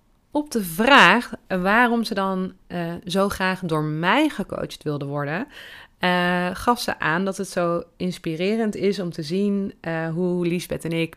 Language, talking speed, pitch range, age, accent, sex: Dutch, 165 wpm, 165-200 Hz, 30-49, Dutch, female